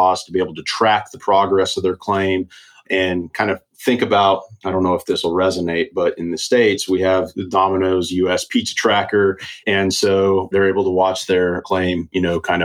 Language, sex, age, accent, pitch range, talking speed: English, male, 30-49, American, 90-100 Hz, 210 wpm